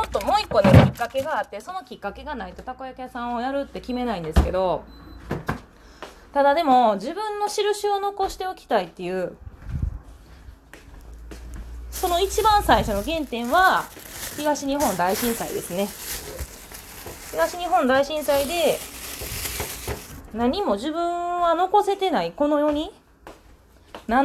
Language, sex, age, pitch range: Japanese, female, 20-39, 200-335 Hz